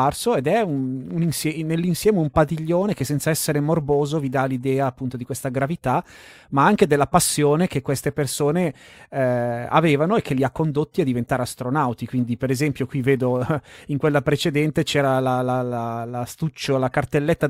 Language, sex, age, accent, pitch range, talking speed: Italian, male, 30-49, native, 125-155 Hz, 180 wpm